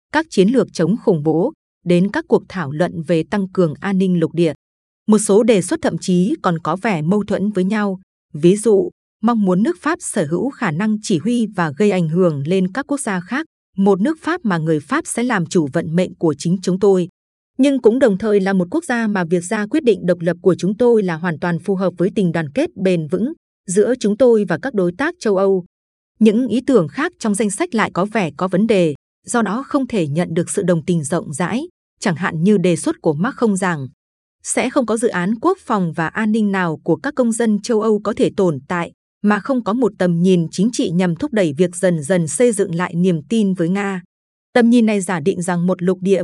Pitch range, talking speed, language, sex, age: 175-230 Hz, 245 wpm, Vietnamese, female, 20-39